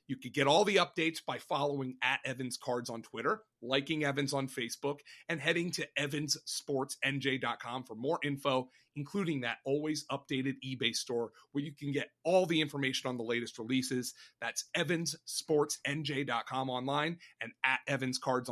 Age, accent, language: 30-49, American, English